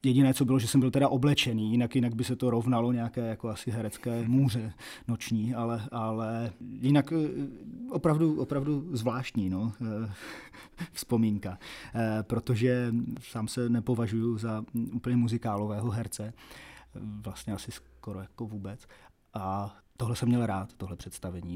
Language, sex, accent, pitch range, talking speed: Czech, male, native, 105-120 Hz, 135 wpm